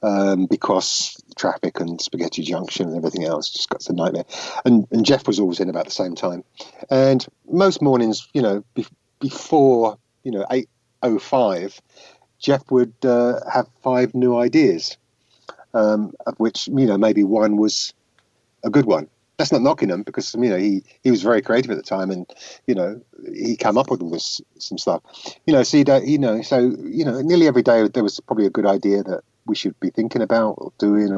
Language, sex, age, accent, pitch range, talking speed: English, male, 50-69, British, 100-130 Hz, 200 wpm